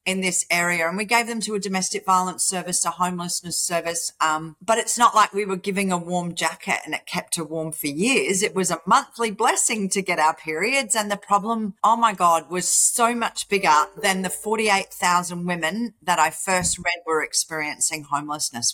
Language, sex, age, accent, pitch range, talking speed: English, female, 40-59, Australian, 170-210 Hz, 200 wpm